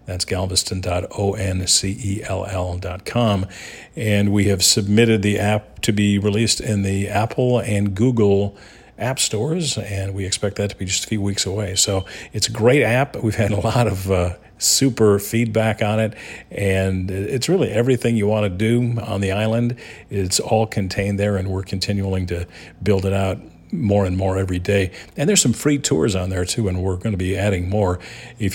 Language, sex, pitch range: English, male, 95-110 Hz